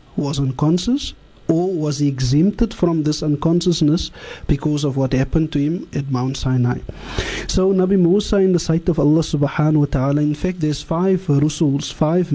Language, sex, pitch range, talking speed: English, male, 140-175 Hz, 170 wpm